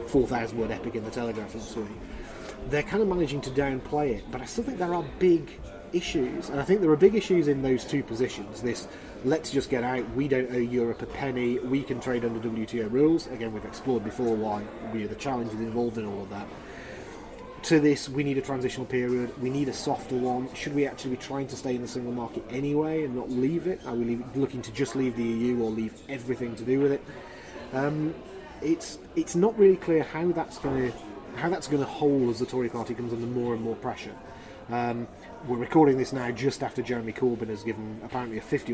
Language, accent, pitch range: English, British, 115-140 Hz